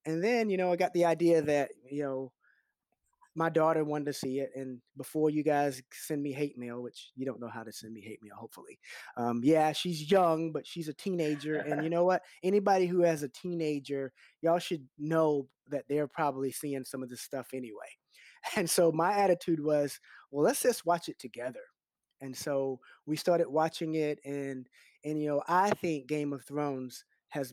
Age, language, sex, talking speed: 20-39, English, male, 200 wpm